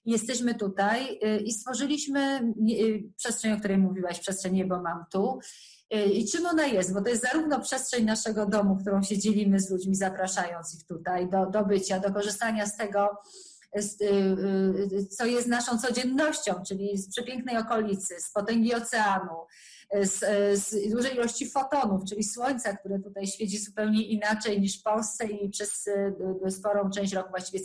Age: 30-49